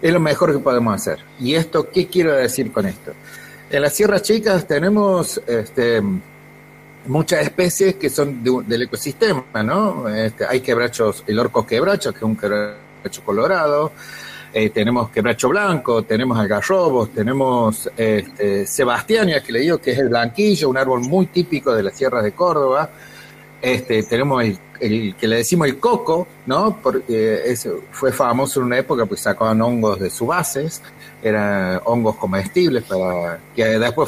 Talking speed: 165 wpm